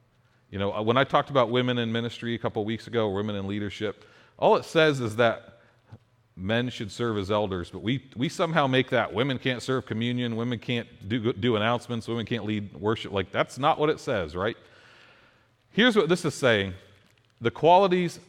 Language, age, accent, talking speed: English, 40-59, American, 195 wpm